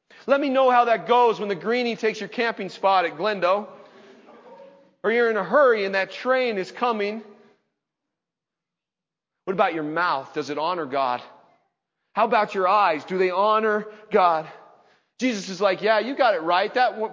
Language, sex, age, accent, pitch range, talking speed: English, male, 40-59, American, 175-235 Hz, 175 wpm